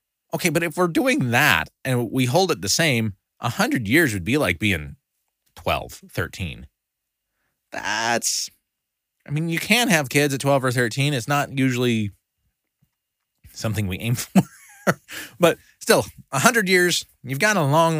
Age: 20-39